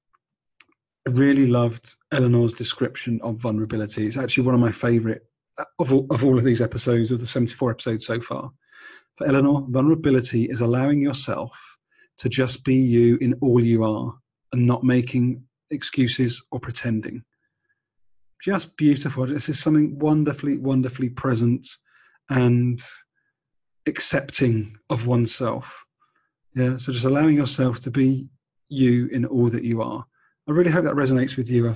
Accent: British